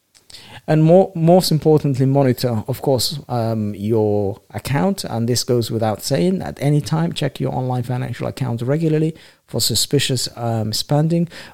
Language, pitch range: English, 115-145 Hz